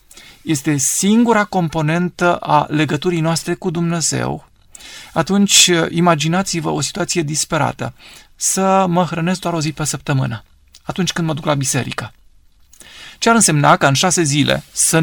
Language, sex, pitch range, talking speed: Romanian, male, 145-180 Hz, 140 wpm